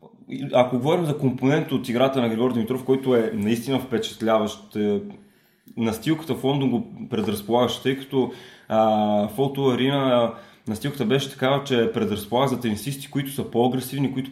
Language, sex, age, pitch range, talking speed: Bulgarian, male, 20-39, 115-135 Hz, 135 wpm